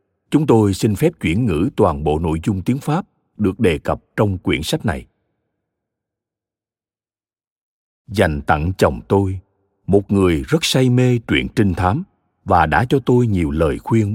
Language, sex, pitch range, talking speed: Vietnamese, male, 95-130 Hz, 160 wpm